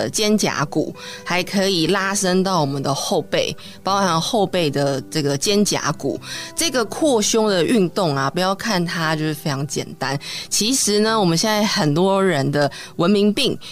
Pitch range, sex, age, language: 155-205 Hz, female, 20-39, Chinese